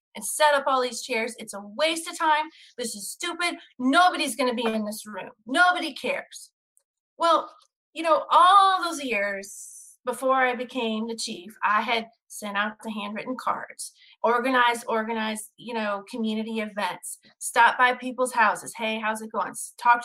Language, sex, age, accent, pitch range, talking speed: English, female, 30-49, American, 225-295 Hz, 170 wpm